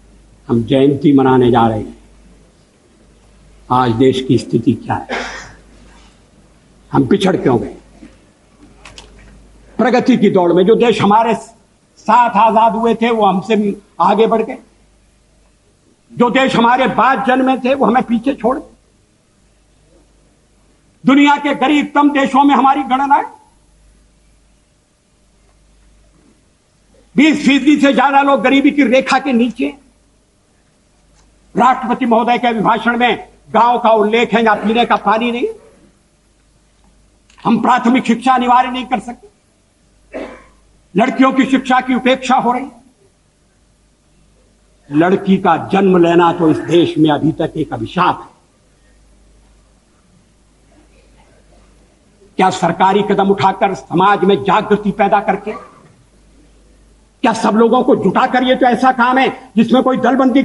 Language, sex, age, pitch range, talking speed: English, male, 60-79, 200-260 Hz, 115 wpm